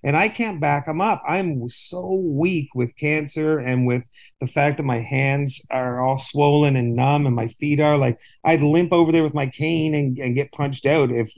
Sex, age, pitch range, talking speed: male, 40-59, 125-155 Hz, 215 wpm